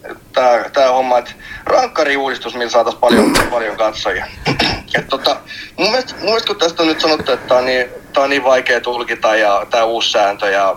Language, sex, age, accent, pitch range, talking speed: Finnish, male, 30-49, native, 120-170 Hz, 185 wpm